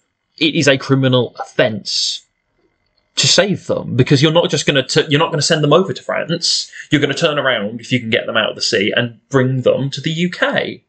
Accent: British